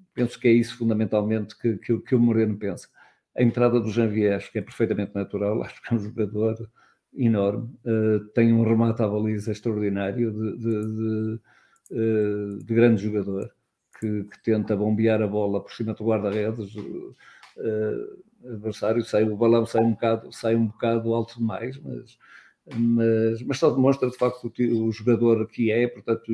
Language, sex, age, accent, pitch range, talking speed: Portuguese, male, 50-69, Portuguese, 110-120 Hz, 175 wpm